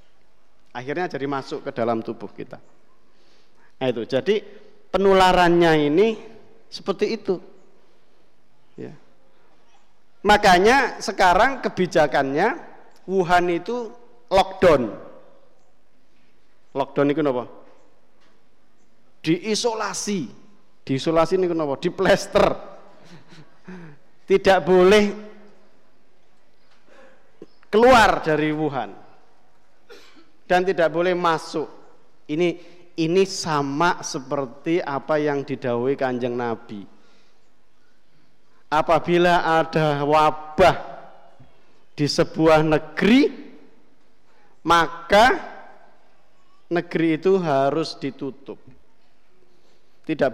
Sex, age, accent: male, 50-69, native